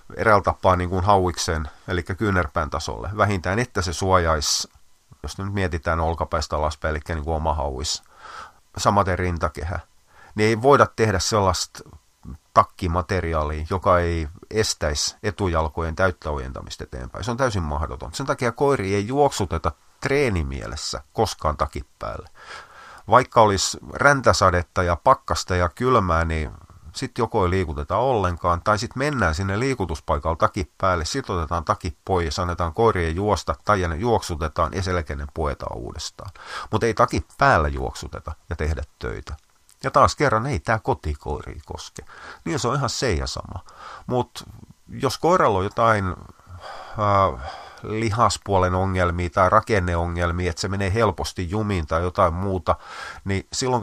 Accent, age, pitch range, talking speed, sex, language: native, 30-49, 80-100 Hz, 135 wpm, male, Finnish